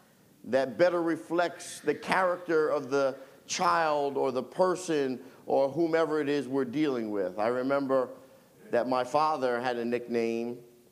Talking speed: 145 wpm